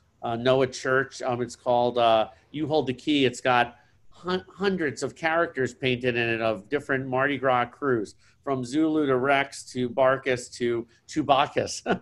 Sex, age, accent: male, 50-69, American